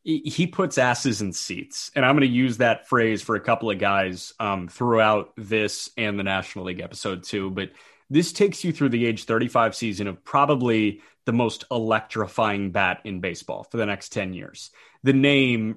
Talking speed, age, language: 190 wpm, 30-49, English